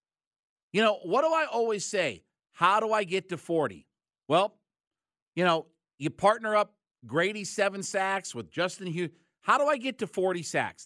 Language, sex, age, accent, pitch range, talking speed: English, male, 50-69, American, 170-225 Hz, 175 wpm